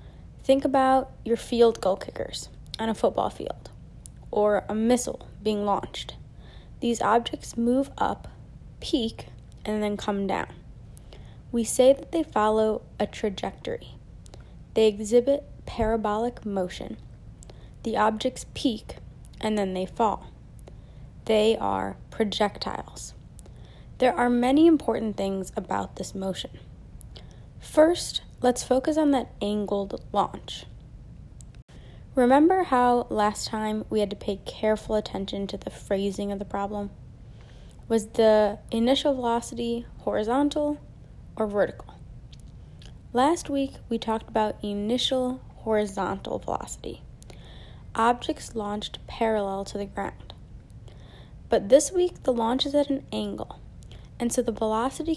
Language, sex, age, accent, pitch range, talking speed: English, female, 20-39, American, 205-255 Hz, 120 wpm